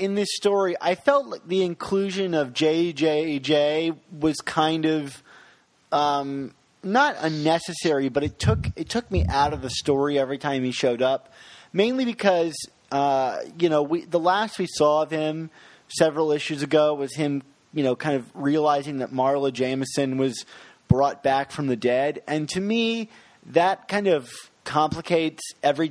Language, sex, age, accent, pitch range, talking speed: English, male, 30-49, American, 135-165 Hz, 160 wpm